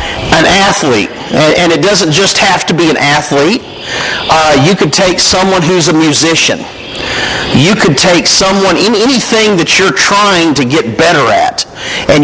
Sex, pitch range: male, 145-175 Hz